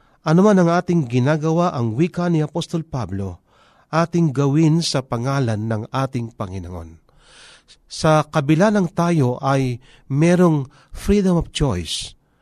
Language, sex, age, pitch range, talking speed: Filipino, male, 40-59, 125-170 Hz, 125 wpm